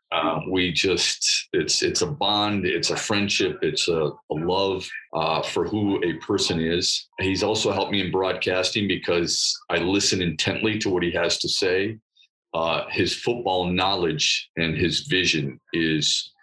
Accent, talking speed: American, 160 wpm